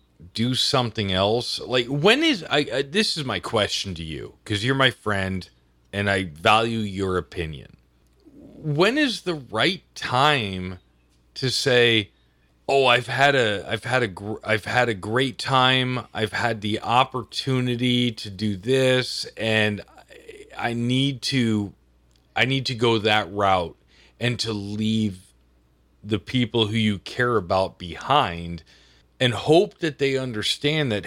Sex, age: male, 30-49